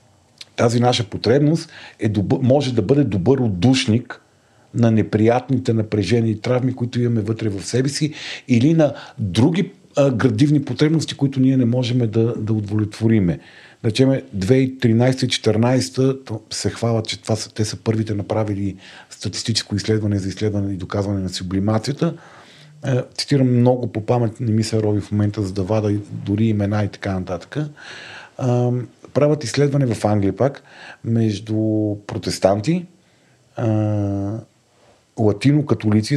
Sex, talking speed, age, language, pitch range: male, 130 wpm, 40-59, Bulgarian, 105-125 Hz